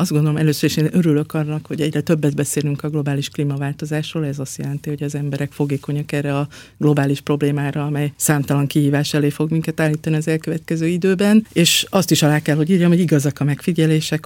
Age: 50-69